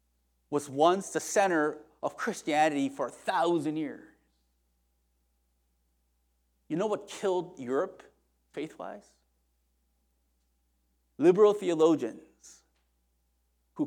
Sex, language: male, English